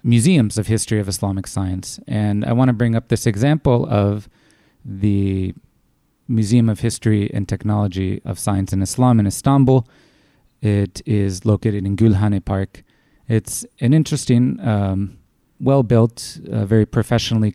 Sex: male